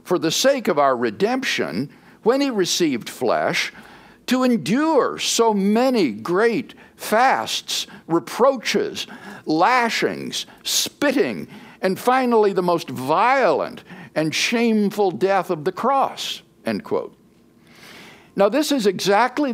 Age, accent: 60-79, American